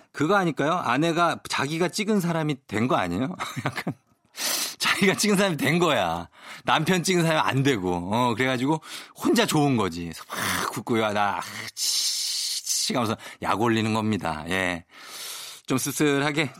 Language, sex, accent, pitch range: Korean, male, native, 115-170 Hz